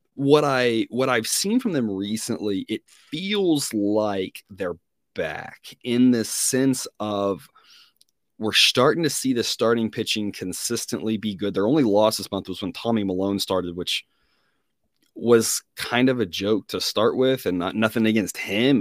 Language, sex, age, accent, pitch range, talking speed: English, male, 30-49, American, 105-140 Hz, 160 wpm